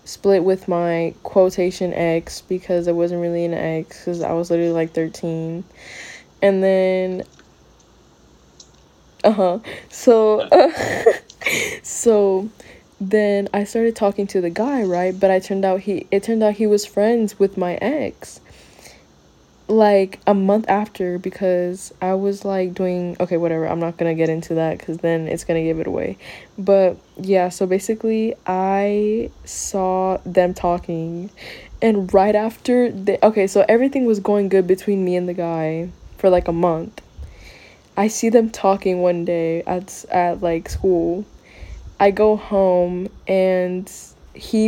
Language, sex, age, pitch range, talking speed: English, female, 20-39, 180-210 Hz, 150 wpm